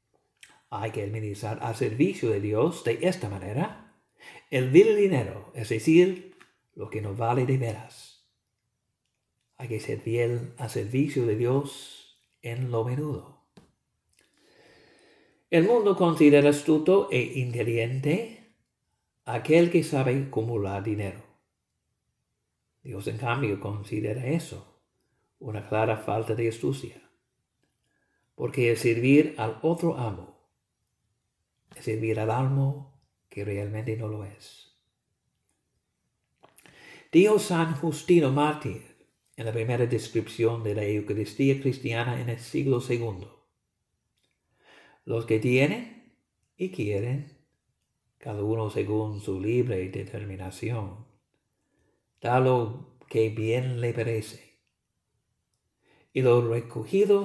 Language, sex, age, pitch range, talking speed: English, male, 60-79, 110-145 Hz, 110 wpm